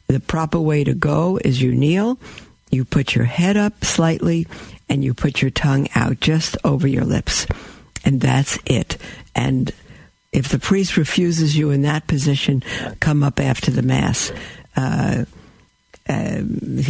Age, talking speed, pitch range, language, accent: 60-79, 155 wpm, 135-165 Hz, English, American